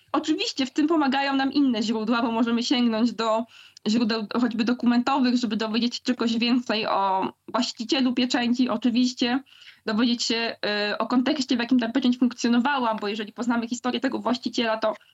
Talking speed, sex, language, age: 155 wpm, female, Polish, 20-39